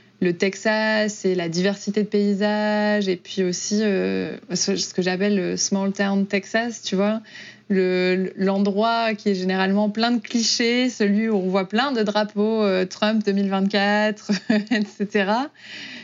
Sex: female